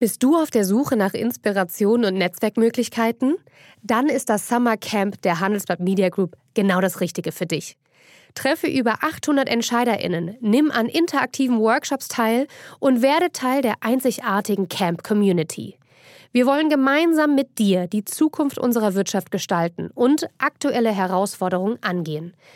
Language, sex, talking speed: German, female, 140 wpm